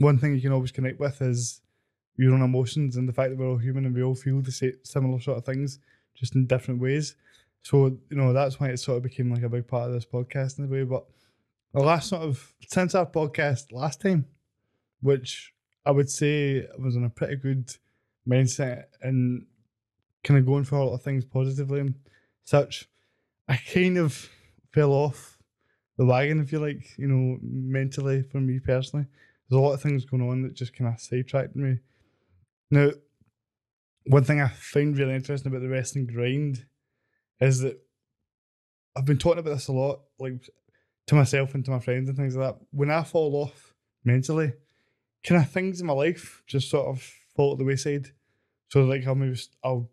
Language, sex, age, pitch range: English, male, 10-29, 125-145 Hz